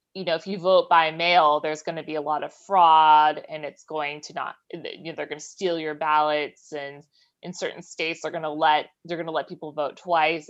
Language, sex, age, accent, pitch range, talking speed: German, female, 20-39, American, 155-190 Hz, 245 wpm